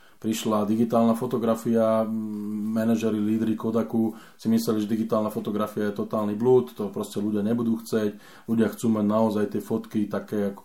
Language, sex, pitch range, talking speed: Slovak, male, 105-135 Hz, 150 wpm